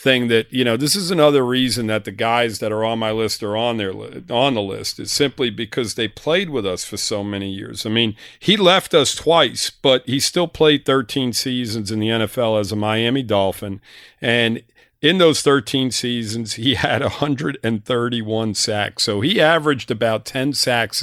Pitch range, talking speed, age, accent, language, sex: 110-140 Hz, 190 wpm, 50-69, American, English, male